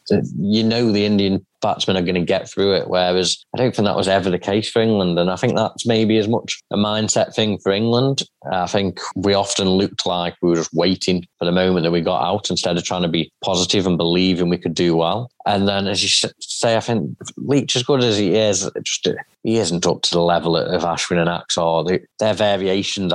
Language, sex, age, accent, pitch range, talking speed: English, male, 20-39, British, 85-100 Hz, 230 wpm